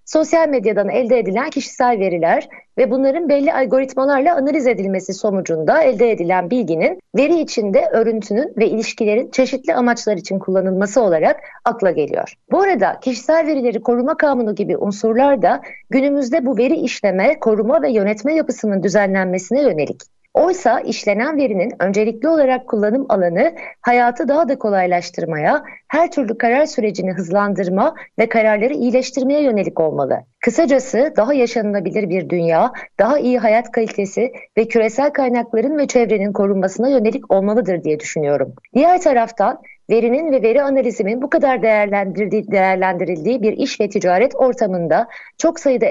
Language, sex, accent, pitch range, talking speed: Turkish, female, native, 205-275 Hz, 135 wpm